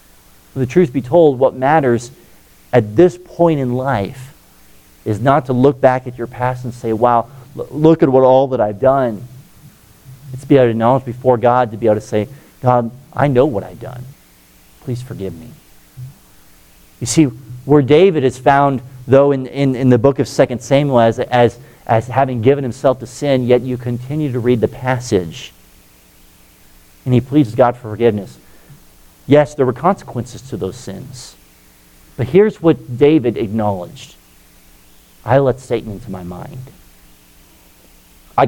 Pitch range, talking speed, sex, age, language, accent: 115-155 Hz, 165 wpm, male, 40-59, English, American